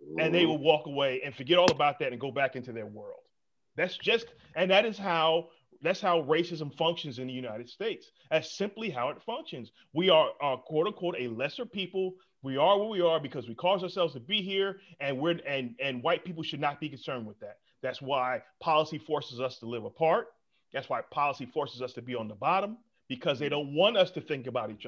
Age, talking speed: 30-49, 225 wpm